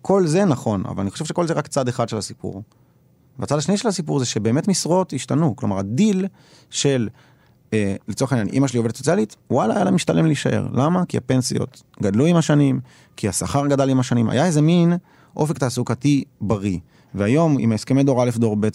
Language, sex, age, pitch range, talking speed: Hebrew, male, 30-49, 110-140 Hz, 190 wpm